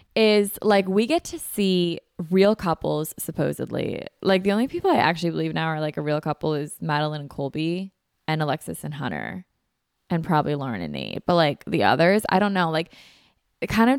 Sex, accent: female, American